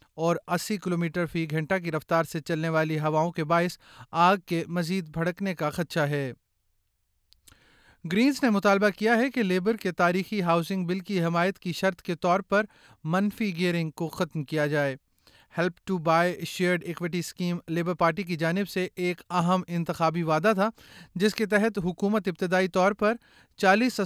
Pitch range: 170-195 Hz